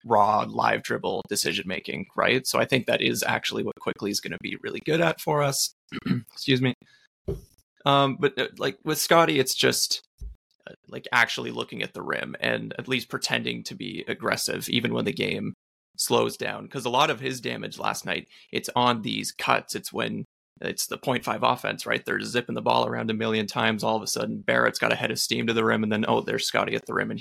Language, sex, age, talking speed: English, male, 20-39, 225 wpm